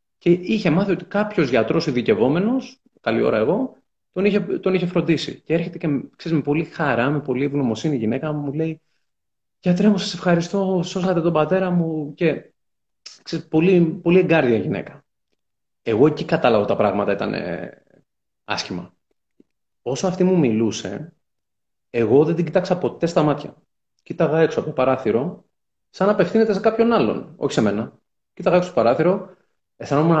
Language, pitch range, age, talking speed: Greek, 125-180 Hz, 30-49, 165 wpm